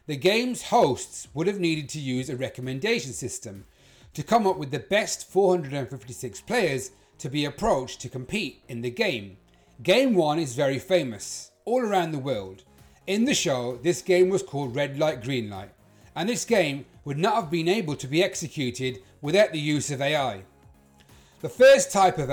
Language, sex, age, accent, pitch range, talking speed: English, male, 30-49, British, 125-185 Hz, 180 wpm